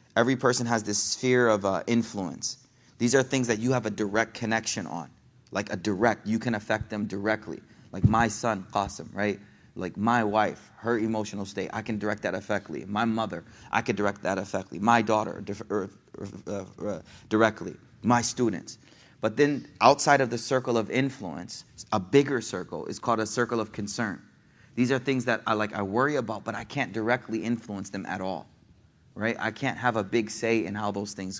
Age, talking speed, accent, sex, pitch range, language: 30-49, 195 wpm, American, male, 110-130 Hz, English